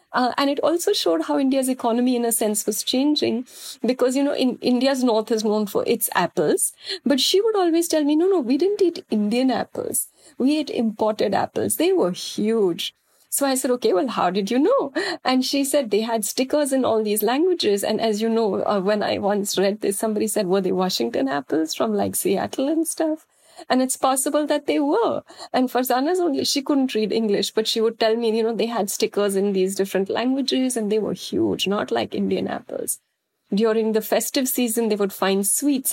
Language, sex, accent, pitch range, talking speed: English, female, Indian, 200-280 Hz, 210 wpm